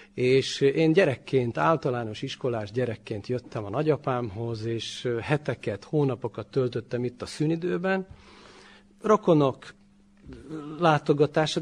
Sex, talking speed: male, 95 wpm